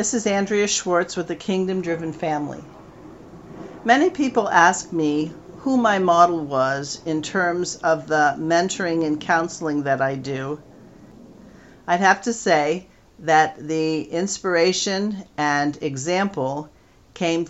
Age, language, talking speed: 50-69, English, 125 wpm